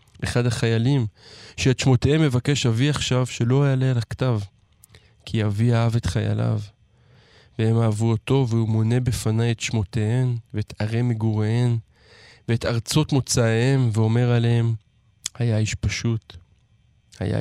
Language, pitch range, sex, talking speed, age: Hebrew, 110-130 Hz, male, 125 wpm, 20-39